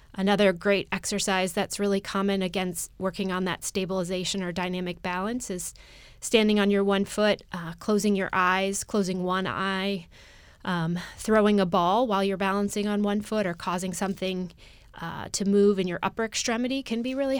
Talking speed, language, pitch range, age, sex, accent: 170 wpm, English, 180-205 Hz, 20-39, female, American